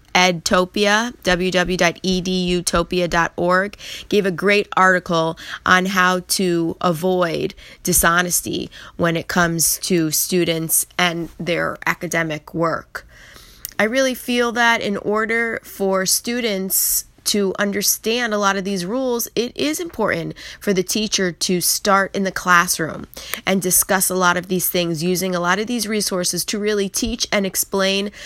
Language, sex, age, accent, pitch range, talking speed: English, female, 20-39, American, 175-205 Hz, 135 wpm